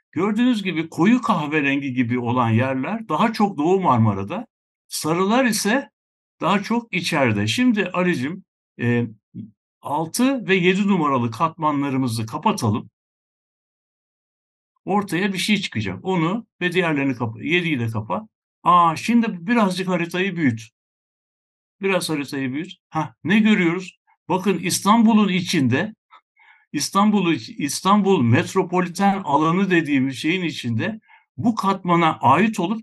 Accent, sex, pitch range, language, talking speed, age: native, male, 145-200 Hz, Turkish, 110 wpm, 60-79